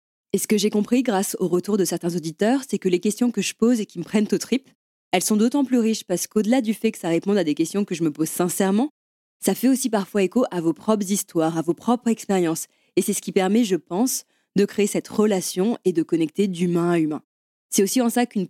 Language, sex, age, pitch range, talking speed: French, female, 20-39, 175-215 Hz, 255 wpm